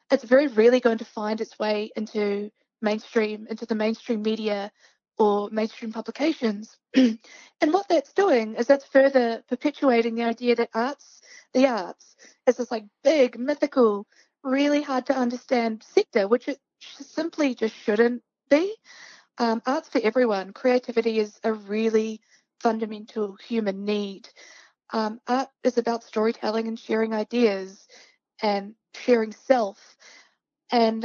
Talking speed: 135 wpm